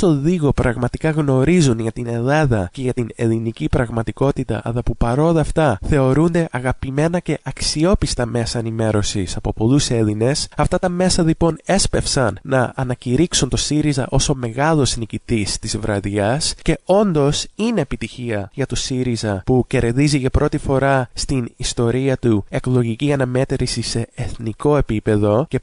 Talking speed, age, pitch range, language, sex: 145 wpm, 20-39, 115-155 Hz, English, male